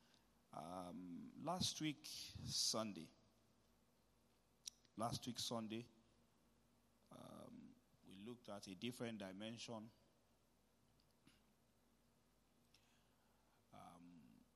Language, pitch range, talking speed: English, 115-140 Hz, 60 wpm